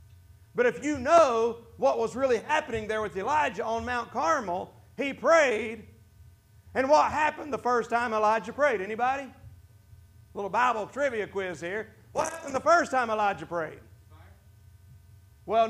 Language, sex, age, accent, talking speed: English, male, 40-59, American, 150 wpm